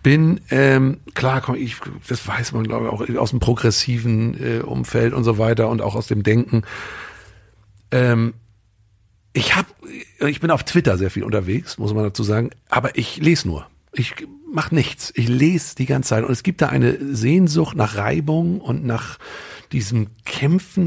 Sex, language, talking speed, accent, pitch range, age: male, German, 180 wpm, German, 110-140 Hz, 50-69